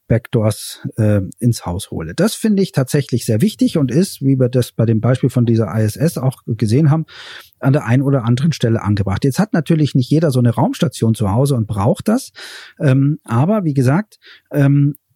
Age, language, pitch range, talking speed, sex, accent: 40-59, German, 120-155 Hz, 200 wpm, male, German